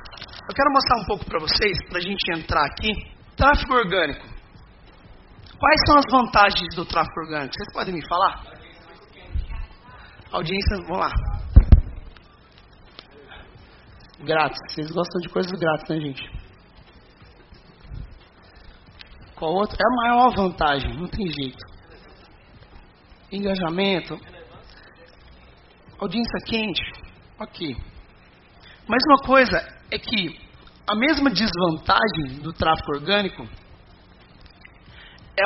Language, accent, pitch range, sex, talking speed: Portuguese, Brazilian, 140-225 Hz, male, 105 wpm